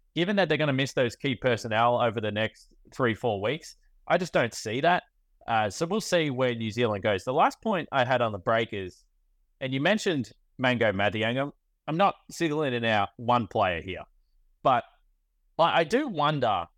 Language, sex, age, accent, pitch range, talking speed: English, male, 30-49, Australian, 100-140 Hz, 195 wpm